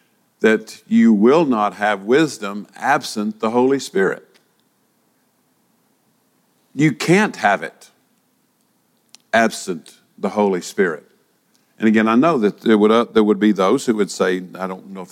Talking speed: 145 wpm